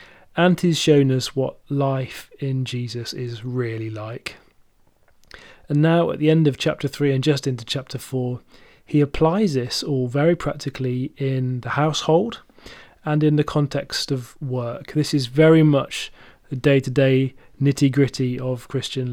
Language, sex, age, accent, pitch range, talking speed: English, male, 30-49, British, 130-150 Hz, 150 wpm